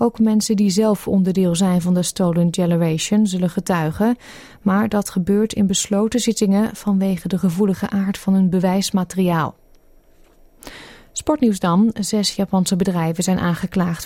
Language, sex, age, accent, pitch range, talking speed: Dutch, female, 30-49, Dutch, 180-210 Hz, 135 wpm